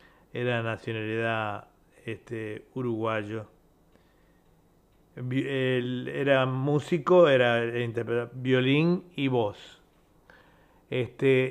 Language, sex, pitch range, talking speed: Spanish, male, 120-135 Hz, 65 wpm